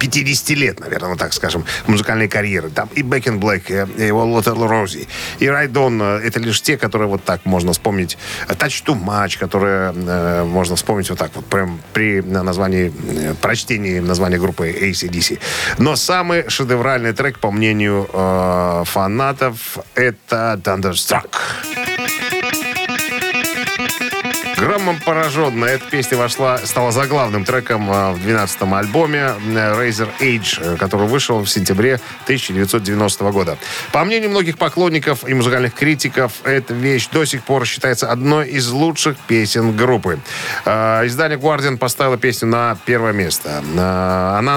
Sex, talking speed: male, 135 wpm